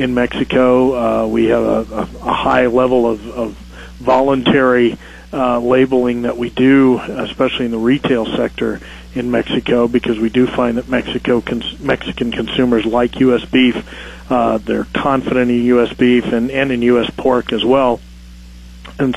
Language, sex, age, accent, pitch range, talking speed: English, male, 40-59, American, 110-130 Hz, 155 wpm